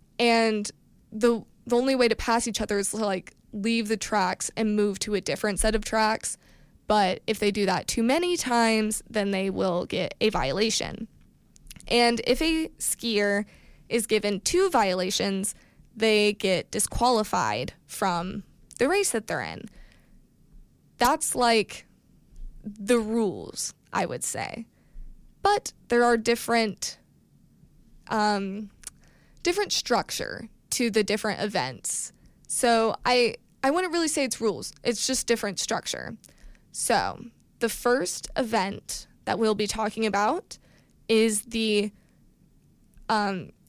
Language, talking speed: English, 130 wpm